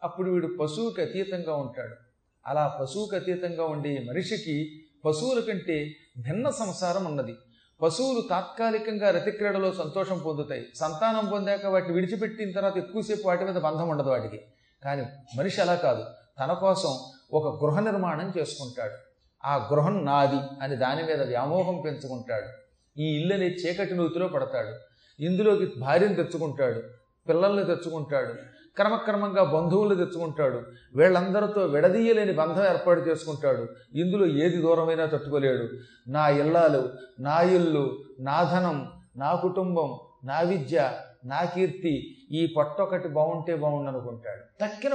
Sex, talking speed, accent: male, 115 wpm, native